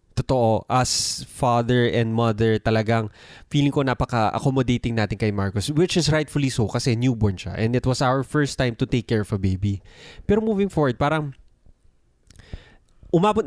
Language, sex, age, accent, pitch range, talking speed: Filipino, male, 20-39, native, 120-165 Hz, 160 wpm